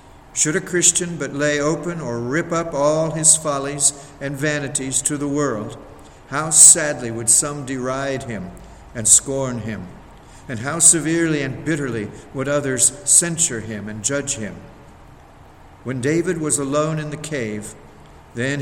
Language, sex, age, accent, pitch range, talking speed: English, male, 50-69, American, 115-145 Hz, 150 wpm